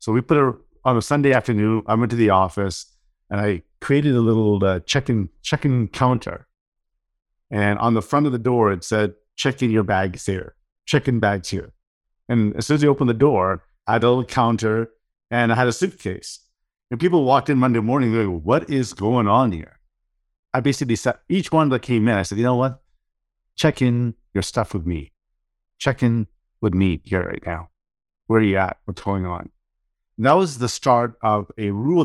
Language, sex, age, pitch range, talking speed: English, male, 50-69, 100-135 Hz, 205 wpm